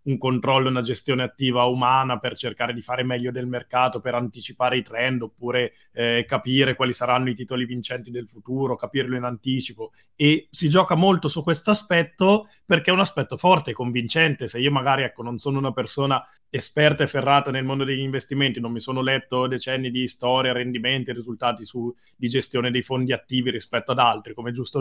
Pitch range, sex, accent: 125-140 Hz, male, native